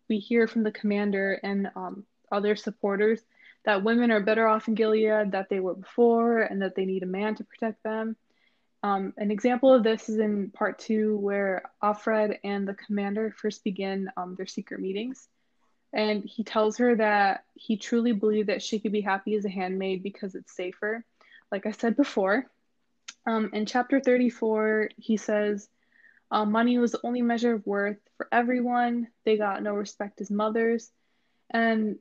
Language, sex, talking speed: English, female, 180 wpm